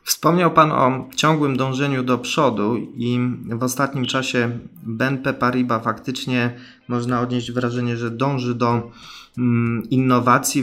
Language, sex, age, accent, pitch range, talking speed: Polish, male, 20-39, native, 115-135 Hz, 120 wpm